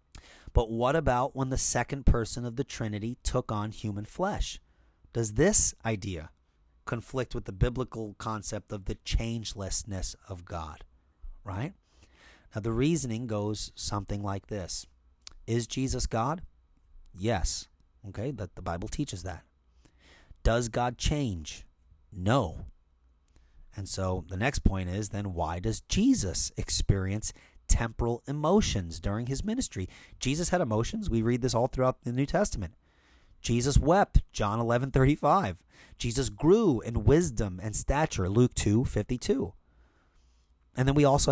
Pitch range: 90-125 Hz